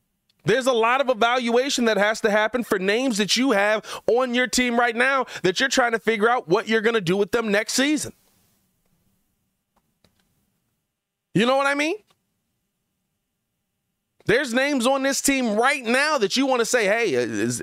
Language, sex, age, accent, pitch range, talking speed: English, male, 30-49, American, 175-260 Hz, 180 wpm